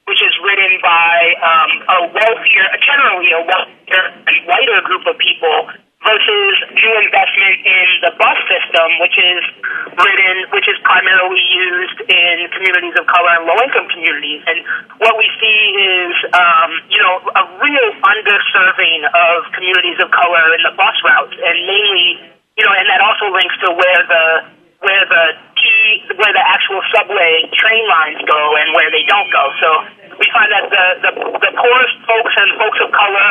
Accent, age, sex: American, 40-59, male